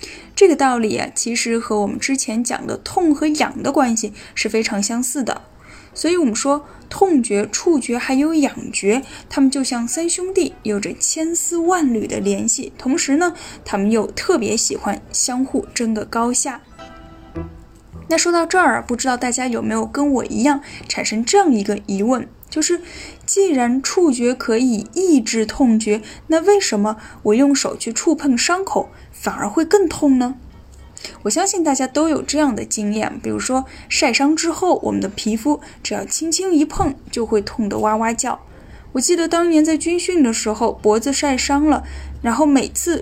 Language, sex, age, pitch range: Chinese, female, 10-29, 225-315 Hz